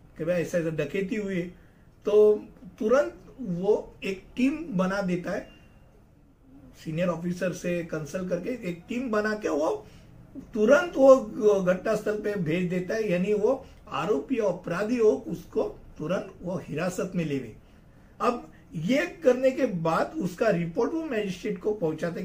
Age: 50-69